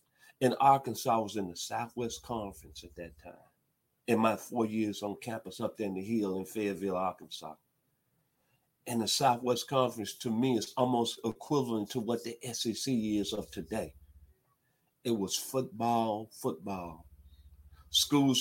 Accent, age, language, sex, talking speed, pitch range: American, 50-69, English, male, 150 wpm, 95-125 Hz